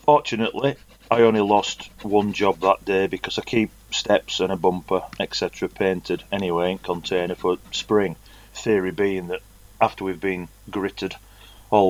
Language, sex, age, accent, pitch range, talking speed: English, male, 30-49, British, 85-100 Hz, 150 wpm